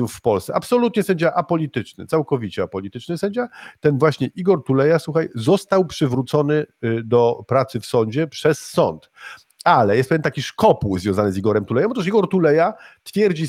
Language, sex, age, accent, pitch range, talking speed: Polish, male, 40-59, native, 120-170 Hz, 150 wpm